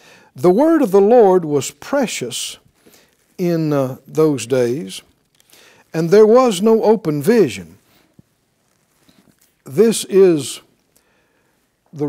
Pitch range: 130-170 Hz